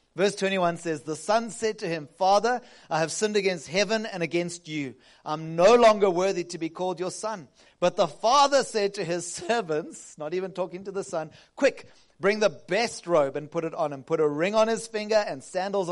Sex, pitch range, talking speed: male, 155-210 Hz, 215 wpm